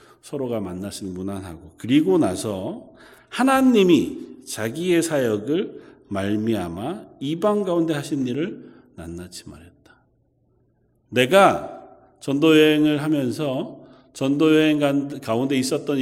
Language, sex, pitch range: Korean, male, 105-150 Hz